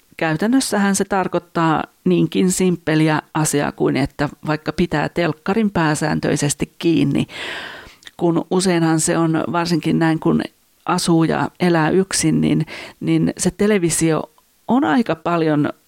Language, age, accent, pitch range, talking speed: Finnish, 40-59, native, 155-185 Hz, 115 wpm